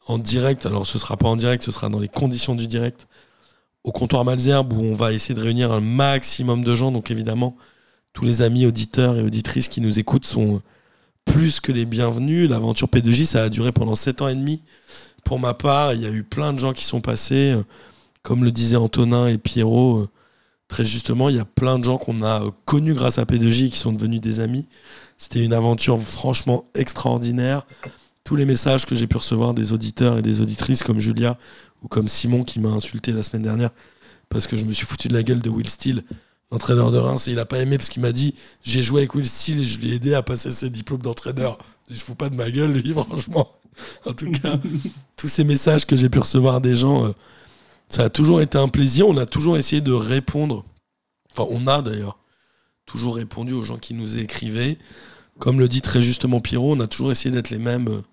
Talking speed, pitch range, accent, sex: 225 wpm, 115-135 Hz, French, male